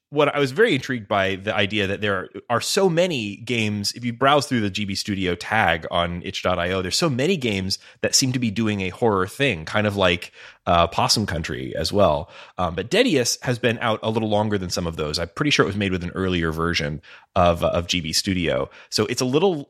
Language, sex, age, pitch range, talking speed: English, male, 30-49, 85-110 Hz, 230 wpm